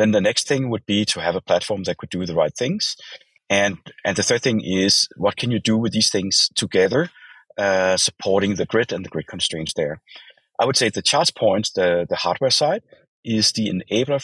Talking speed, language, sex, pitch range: 220 wpm, English, male, 95-115 Hz